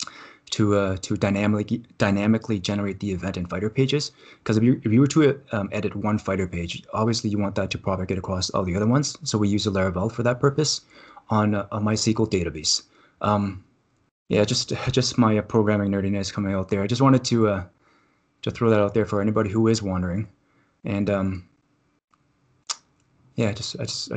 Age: 20-39